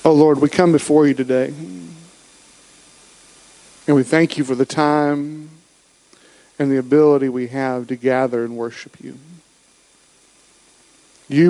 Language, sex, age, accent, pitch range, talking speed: English, male, 50-69, American, 130-160 Hz, 130 wpm